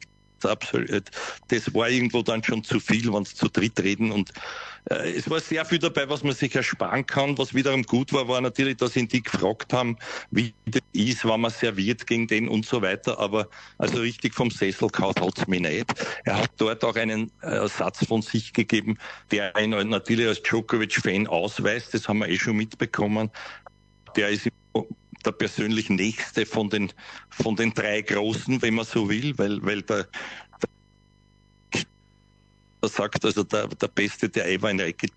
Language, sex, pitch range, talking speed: English, male, 100-125 Hz, 185 wpm